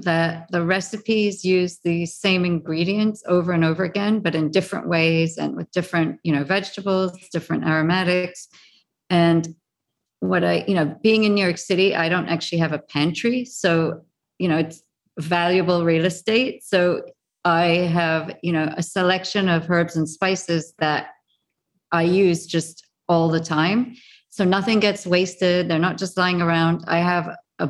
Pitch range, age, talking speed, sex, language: 165-200 Hz, 40-59, 165 wpm, female, English